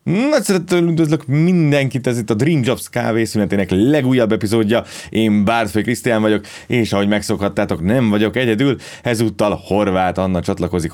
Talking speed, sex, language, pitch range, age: 145 wpm, male, Hungarian, 85-105 Hz, 30-49